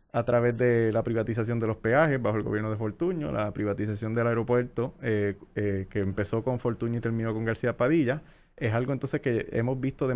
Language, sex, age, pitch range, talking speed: Spanish, male, 30-49, 115-150 Hz, 205 wpm